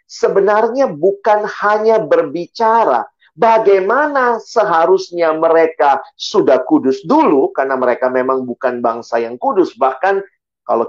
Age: 40-59